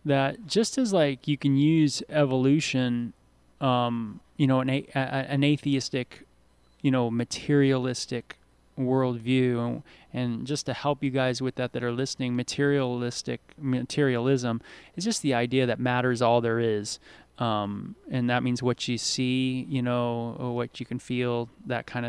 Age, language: 20-39, English